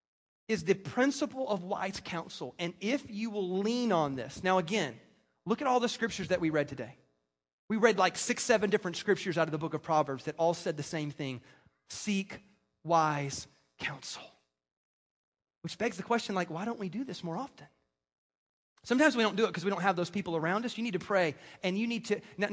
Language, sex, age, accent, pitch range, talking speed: English, male, 30-49, American, 165-220 Hz, 215 wpm